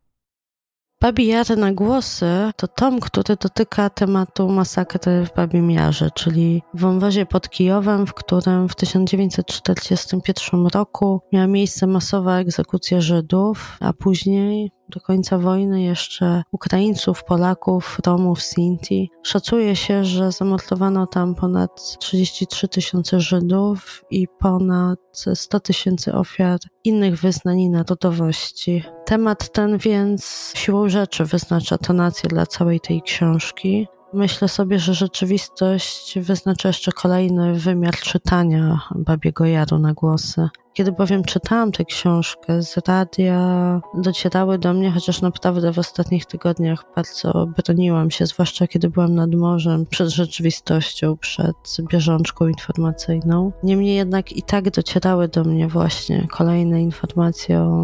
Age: 20-39